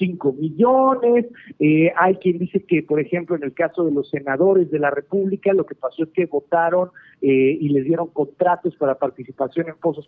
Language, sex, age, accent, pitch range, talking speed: Spanish, male, 50-69, Mexican, 150-195 Hz, 195 wpm